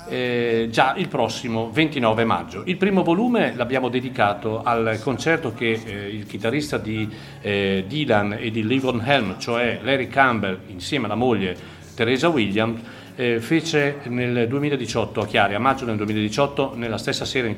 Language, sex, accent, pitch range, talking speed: Italian, male, native, 110-150 Hz, 155 wpm